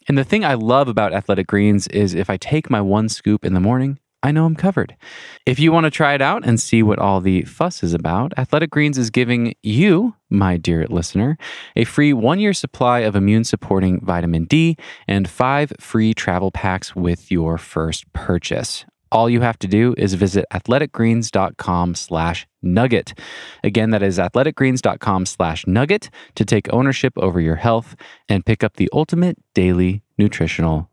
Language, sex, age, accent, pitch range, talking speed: English, male, 20-39, American, 100-145 Hz, 175 wpm